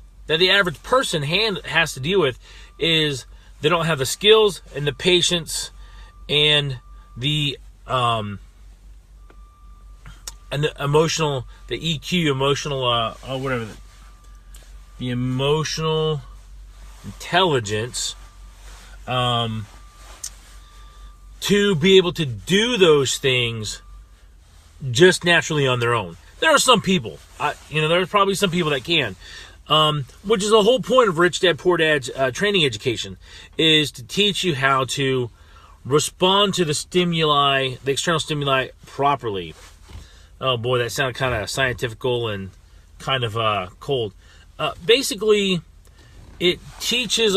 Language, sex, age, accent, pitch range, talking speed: English, male, 30-49, American, 100-160 Hz, 135 wpm